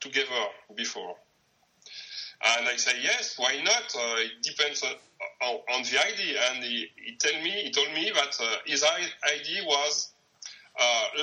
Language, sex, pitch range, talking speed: English, male, 140-195 Hz, 155 wpm